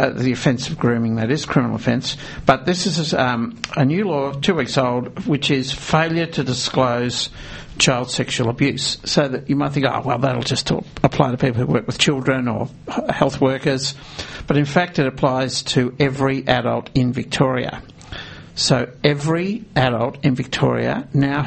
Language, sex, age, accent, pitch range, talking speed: English, male, 60-79, Australian, 125-150 Hz, 170 wpm